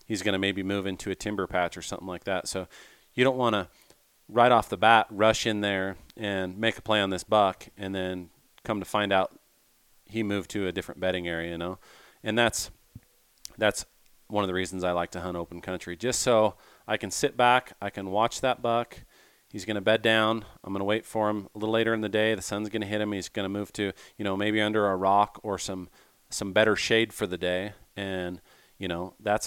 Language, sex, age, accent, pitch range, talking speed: English, male, 40-59, American, 95-110 Hz, 240 wpm